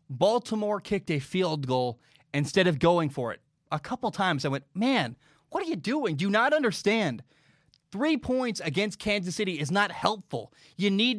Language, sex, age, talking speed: English, male, 20-39, 180 wpm